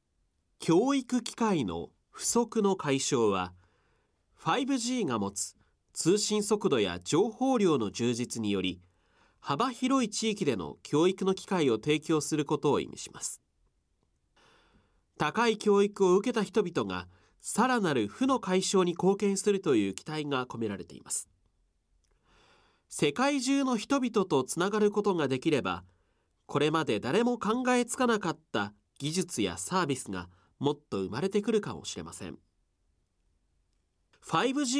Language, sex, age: Japanese, male, 40-59